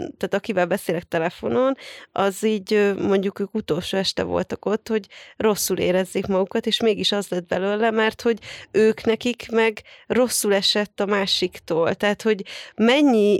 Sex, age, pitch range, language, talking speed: female, 30-49, 190-225 Hz, Hungarian, 150 wpm